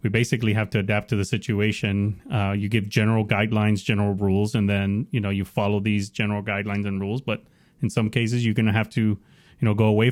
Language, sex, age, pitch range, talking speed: English, male, 30-49, 100-120 Hz, 230 wpm